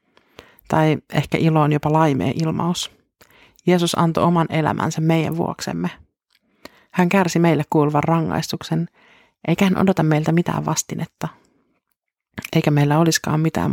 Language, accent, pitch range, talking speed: Finnish, native, 155-180 Hz, 120 wpm